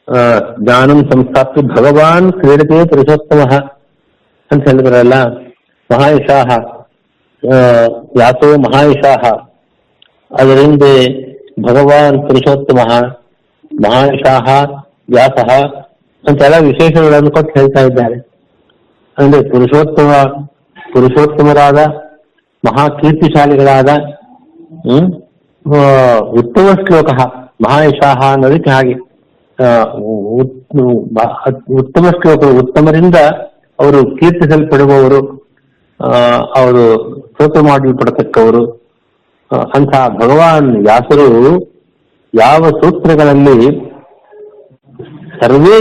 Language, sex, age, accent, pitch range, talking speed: Kannada, male, 60-79, native, 130-155 Hz, 60 wpm